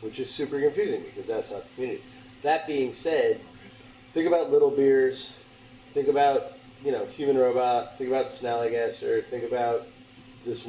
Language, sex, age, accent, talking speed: English, male, 30-49, American, 165 wpm